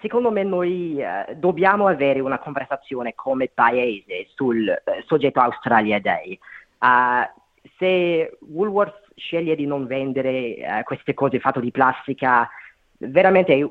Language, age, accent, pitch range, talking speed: Italian, 30-49, native, 130-160 Hz, 125 wpm